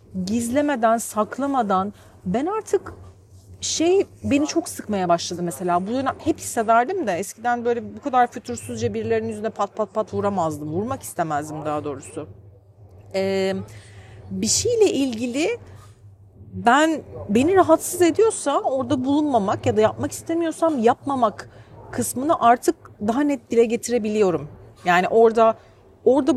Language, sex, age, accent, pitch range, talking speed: Turkish, female, 40-59, native, 180-275 Hz, 120 wpm